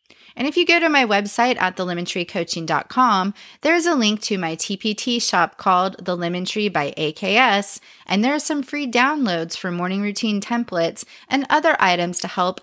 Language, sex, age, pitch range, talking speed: English, female, 20-39, 170-235 Hz, 170 wpm